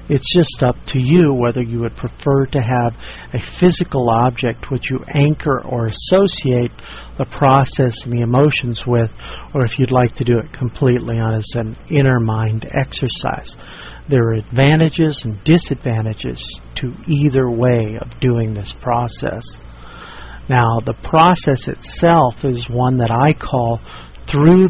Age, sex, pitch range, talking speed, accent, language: 50-69, male, 120-145 Hz, 145 wpm, American, English